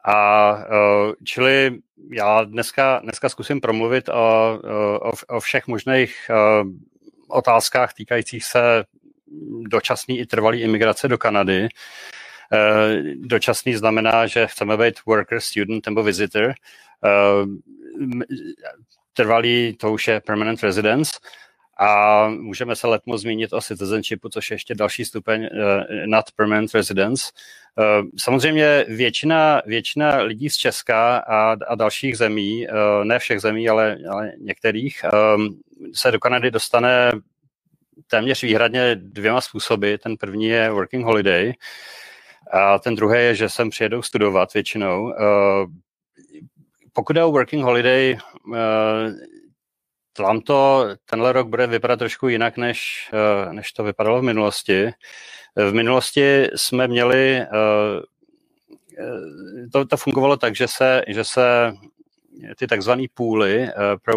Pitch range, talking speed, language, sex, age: 105-130 Hz, 120 wpm, Czech, male, 40-59